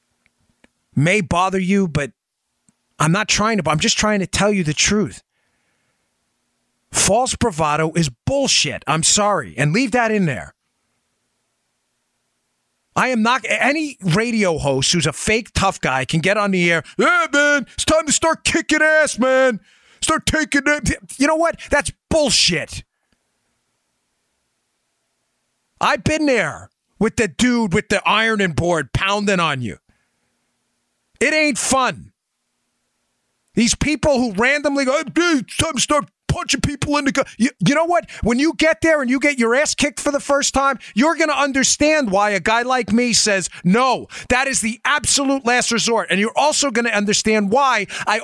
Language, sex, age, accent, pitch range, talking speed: English, male, 30-49, American, 195-275 Hz, 170 wpm